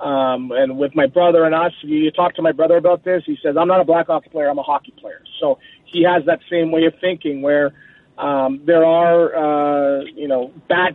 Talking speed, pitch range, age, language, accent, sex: 230 wpm, 150-175 Hz, 30-49, English, American, male